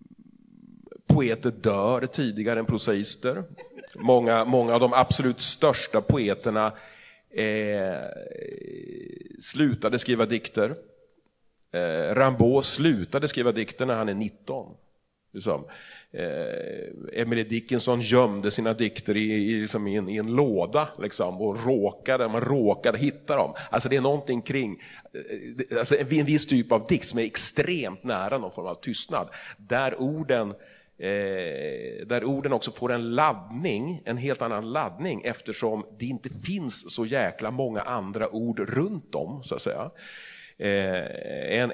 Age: 40-59